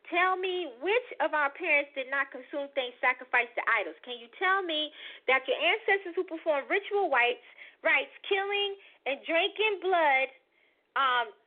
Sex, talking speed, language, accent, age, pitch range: female, 150 wpm, English, American, 40-59, 320-430 Hz